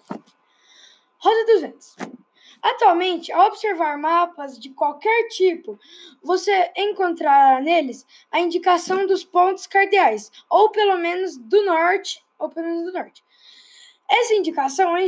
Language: Portuguese